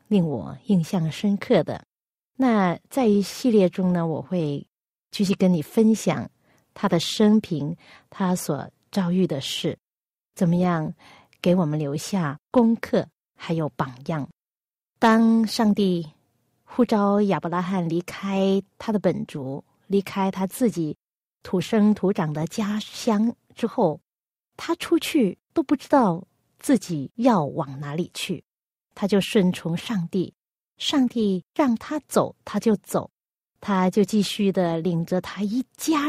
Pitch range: 175-230 Hz